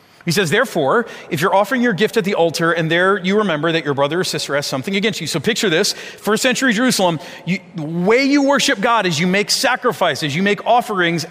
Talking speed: 230 wpm